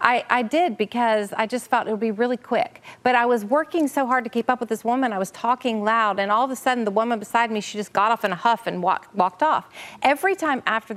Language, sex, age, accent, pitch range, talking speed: English, female, 40-59, American, 215-275 Hz, 280 wpm